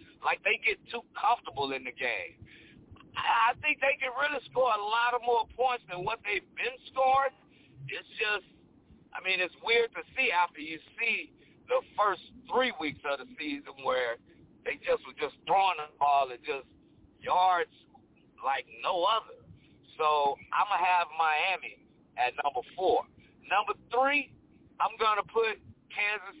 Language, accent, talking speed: English, American, 165 wpm